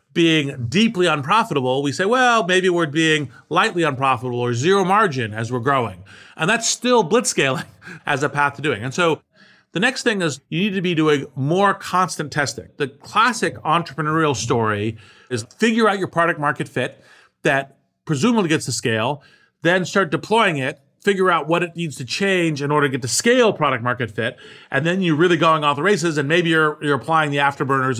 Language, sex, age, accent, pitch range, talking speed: English, male, 40-59, American, 130-180 Hz, 195 wpm